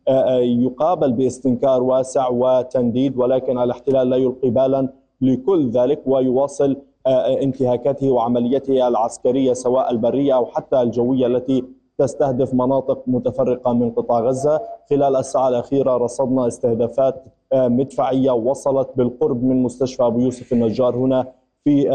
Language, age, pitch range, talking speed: Arabic, 20-39, 125-140 Hz, 115 wpm